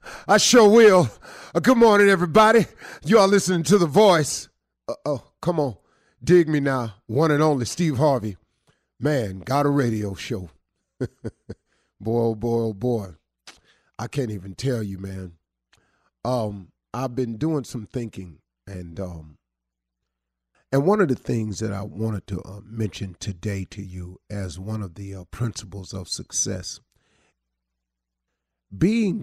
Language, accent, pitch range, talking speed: English, American, 90-140 Hz, 150 wpm